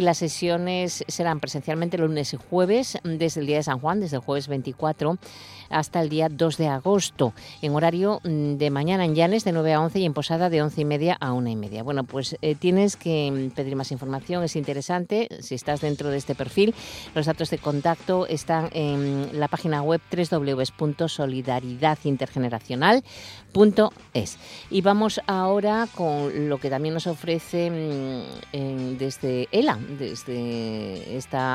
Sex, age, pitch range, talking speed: female, 50-69, 135-175 Hz, 160 wpm